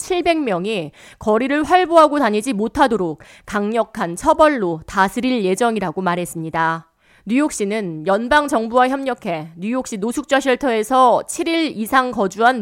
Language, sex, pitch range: Korean, female, 190-275 Hz